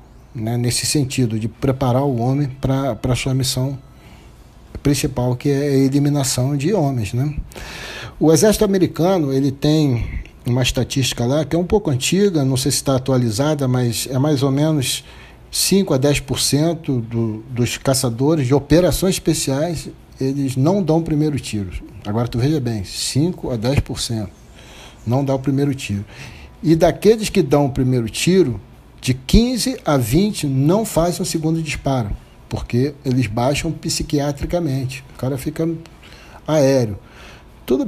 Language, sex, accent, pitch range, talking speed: Portuguese, male, Brazilian, 120-150 Hz, 145 wpm